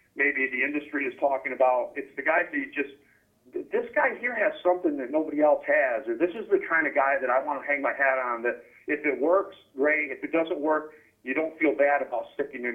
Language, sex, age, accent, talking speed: English, male, 50-69, American, 240 wpm